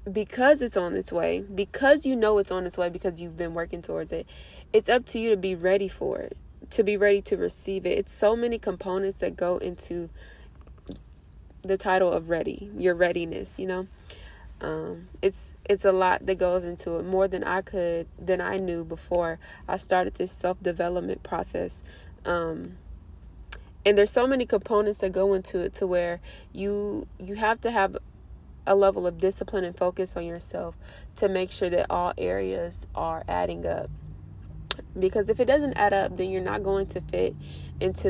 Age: 20-39